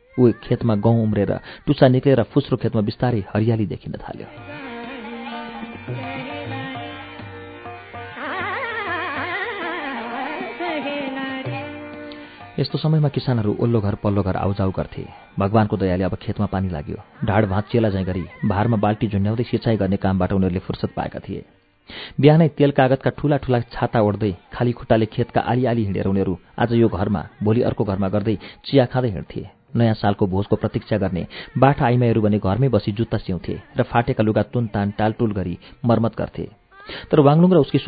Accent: Indian